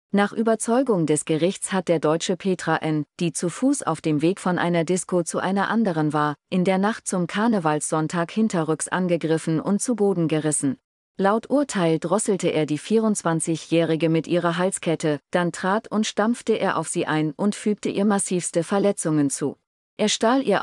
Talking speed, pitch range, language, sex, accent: 170 wpm, 160-200 Hz, German, female, German